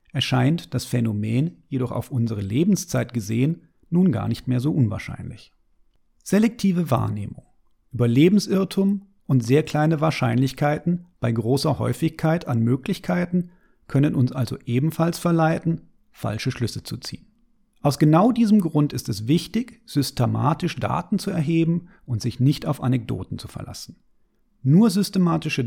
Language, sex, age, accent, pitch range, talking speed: German, male, 40-59, German, 120-170 Hz, 130 wpm